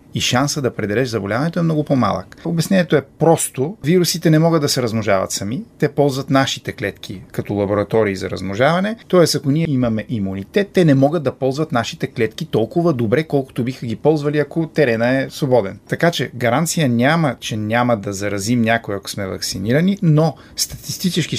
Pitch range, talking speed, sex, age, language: 115-155 Hz, 175 wpm, male, 30-49, Bulgarian